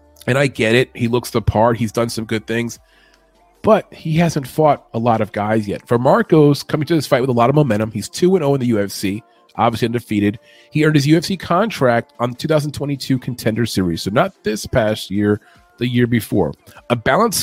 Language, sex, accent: English, male, American